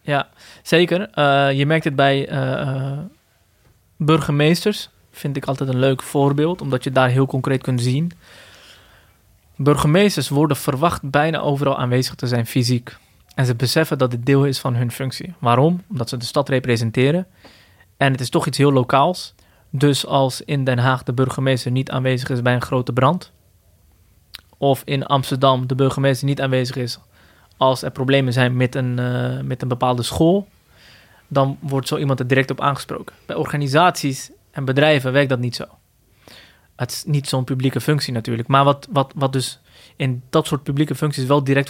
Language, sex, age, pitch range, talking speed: Dutch, male, 20-39, 125-145 Hz, 175 wpm